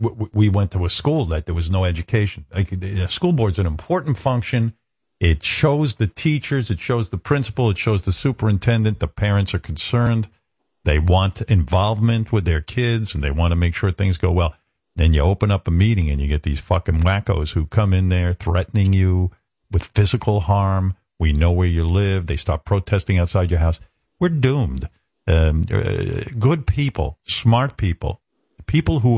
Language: English